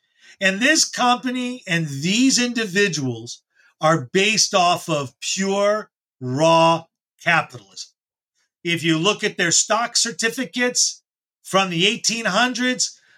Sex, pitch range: male, 165-225 Hz